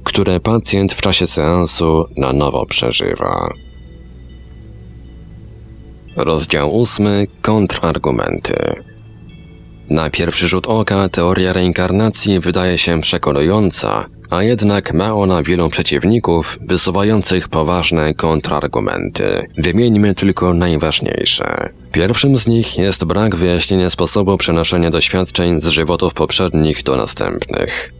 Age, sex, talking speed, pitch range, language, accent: 30-49, male, 100 wpm, 80-100 Hz, Polish, native